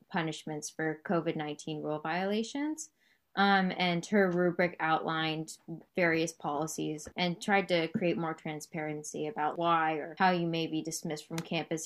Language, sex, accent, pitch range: English, female, American, 160-195 Hz